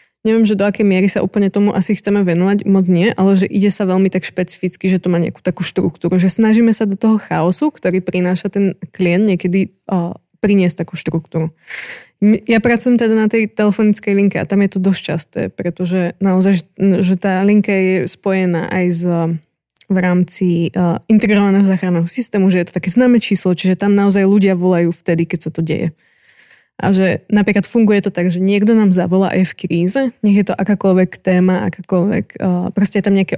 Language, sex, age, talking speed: Slovak, female, 20-39, 195 wpm